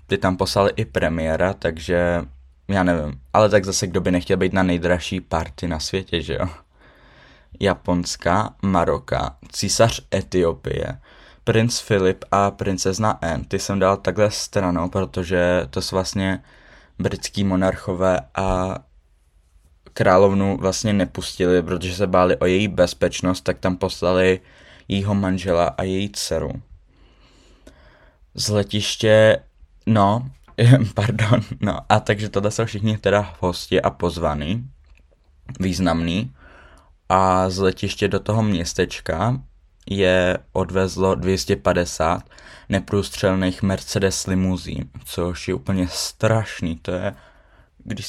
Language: Czech